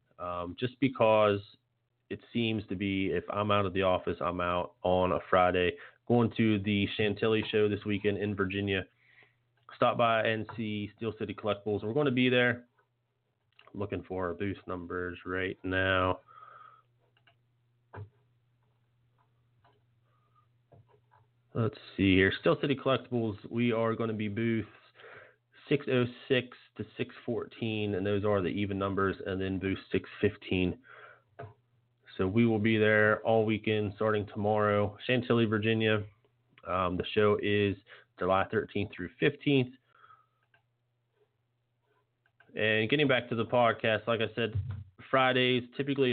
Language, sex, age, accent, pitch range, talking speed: English, male, 30-49, American, 100-120 Hz, 130 wpm